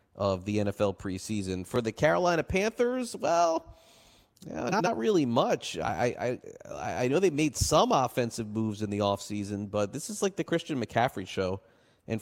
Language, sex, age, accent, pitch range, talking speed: English, male, 30-49, American, 105-145 Hz, 170 wpm